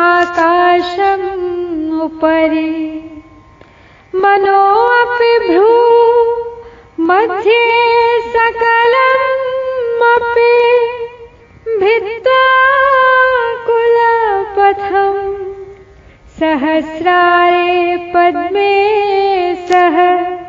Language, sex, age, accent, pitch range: Hindi, female, 30-49, native, 350-400 Hz